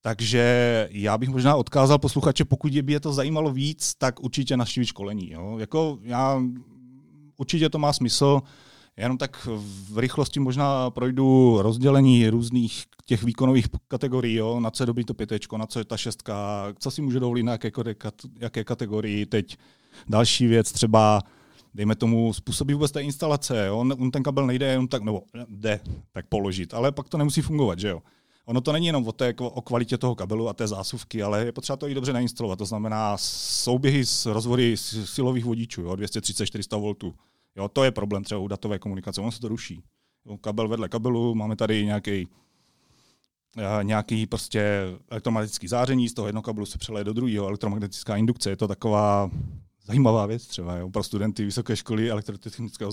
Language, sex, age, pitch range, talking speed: Slovak, male, 30-49, 105-130 Hz, 180 wpm